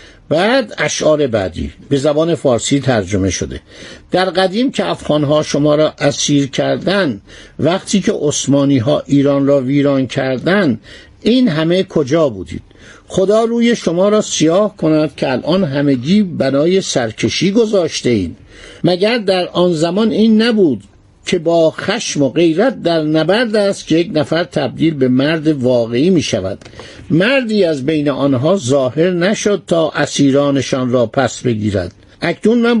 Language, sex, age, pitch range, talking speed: Persian, male, 60-79, 140-195 Hz, 140 wpm